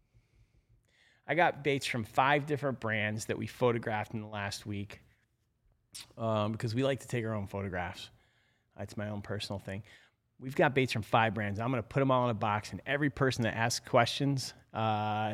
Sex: male